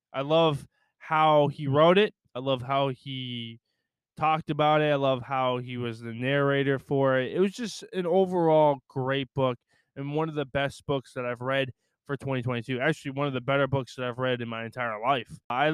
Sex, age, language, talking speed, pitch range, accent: male, 20-39, English, 205 wpm, 135-160 Hz, American